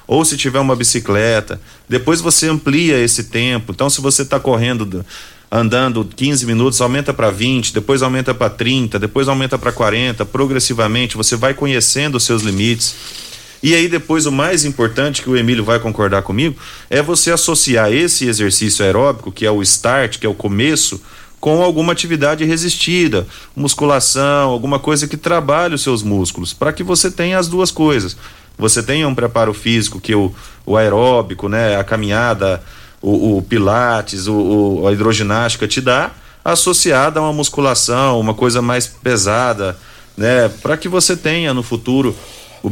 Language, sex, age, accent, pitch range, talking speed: Portuguese, male, 40-59, Brazilian, 105-140 Hz, 165 wpm